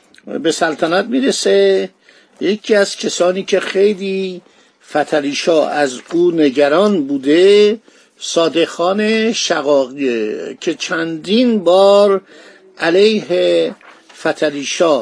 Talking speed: 80 wpm